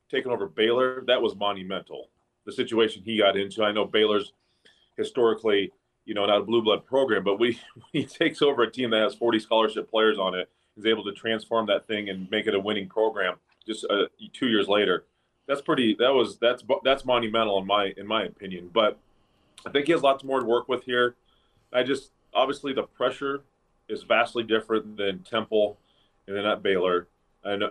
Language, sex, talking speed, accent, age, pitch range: English, male, 195 wpm, American, 30-49, 100-120 Hz